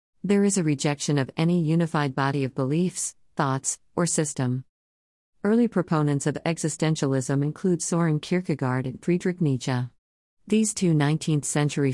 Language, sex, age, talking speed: English, female, 50-69, 130 wpm